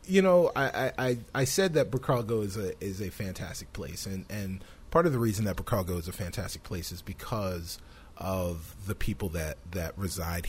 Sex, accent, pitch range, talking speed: male, American, 85-120 Hz, 195 wpm